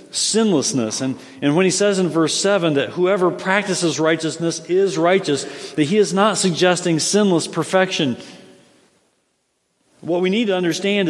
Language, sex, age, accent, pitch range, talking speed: English, male, 50-69, American, 145-195 Hz, 145 wpm